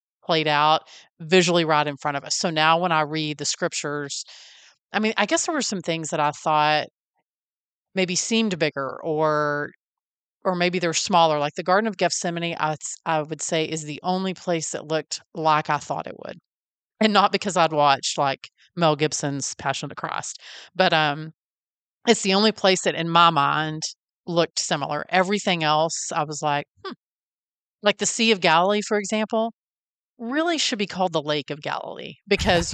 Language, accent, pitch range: English, American, 150-190 Hz